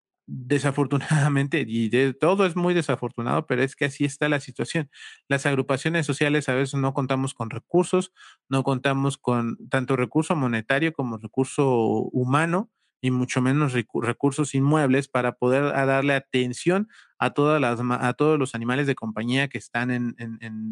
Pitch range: 120-145 Hz